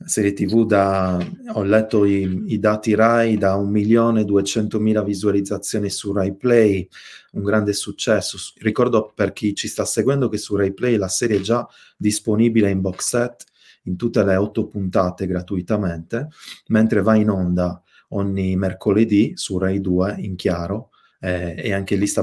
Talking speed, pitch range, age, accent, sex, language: 155 wpm, 95-115 Hz, 30-49, native, male, Italian